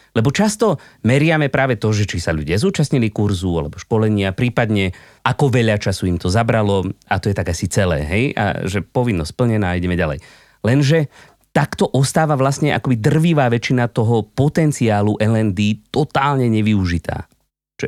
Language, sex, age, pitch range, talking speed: Slovak, male, 30-49, 100-140 Hz, 160 wpm